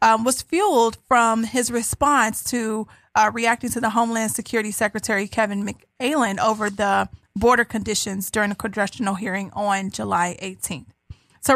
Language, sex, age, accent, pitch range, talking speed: English, female, 30-49, American, 215-250 Hz, 145 wpm